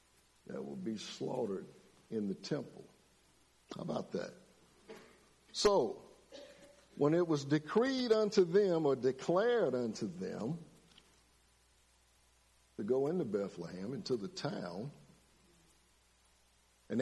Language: English